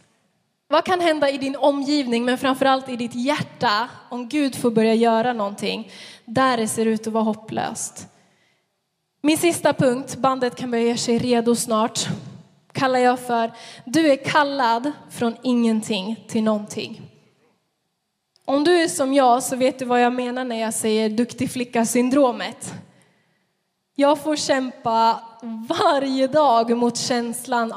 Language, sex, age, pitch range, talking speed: Swedish, female, 10-29, 235-275 Hz, 145 wpm